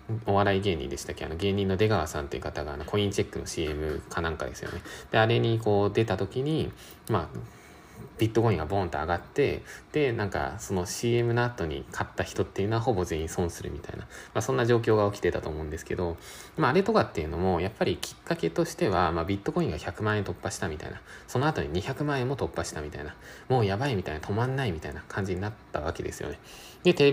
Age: 20-39